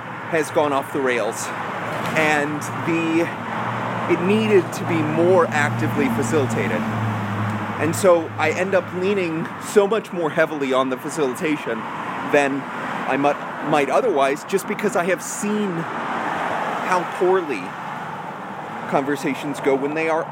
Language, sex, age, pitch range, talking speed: English, male, 30-49, 140-195 Hz, 125 wpm